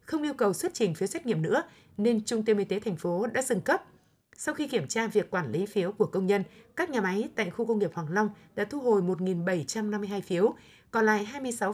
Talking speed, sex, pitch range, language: 240 wpm, female, 195-235 Hz, Vietnamese